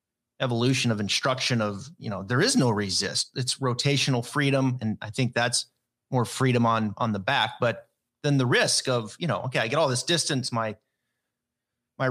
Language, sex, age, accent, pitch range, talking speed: English, male, 30-49, American, 115-140 Hz, 190 wpm